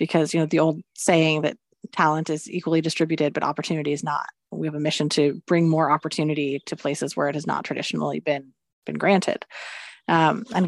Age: 30-49